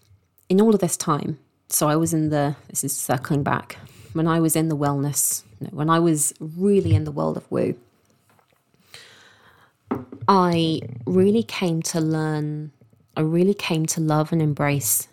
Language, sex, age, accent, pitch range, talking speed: English, female, 20-39, British, 130-165 Hz, 165 wpm